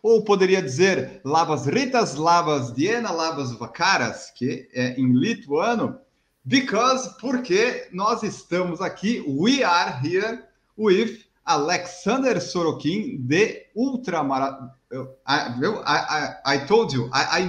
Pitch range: 130-200 Hz